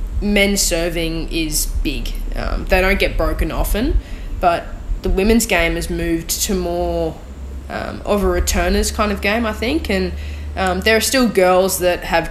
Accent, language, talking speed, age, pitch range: Australian, English, 170 wpm, 10-29, 165-190 Hz